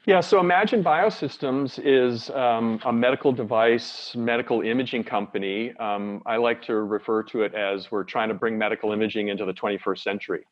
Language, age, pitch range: English, 40-59, 100-115 Hz